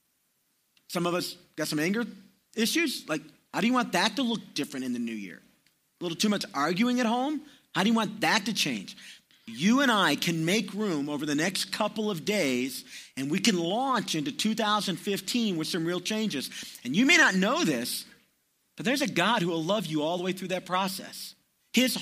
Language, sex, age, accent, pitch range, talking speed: English, male, 40-59, American, 165-225 Hz, 210 wpm